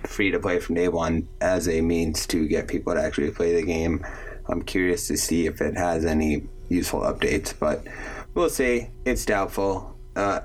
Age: 20-39